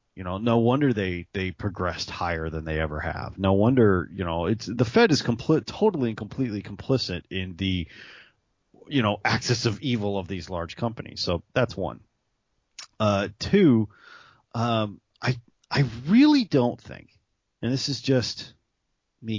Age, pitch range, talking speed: 30-49, 95-125 Hz, 160 wpm